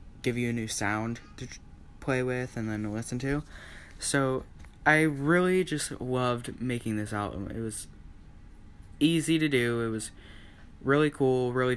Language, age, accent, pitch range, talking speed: English, 20-39, American, 80-135 Hz, 150 wpm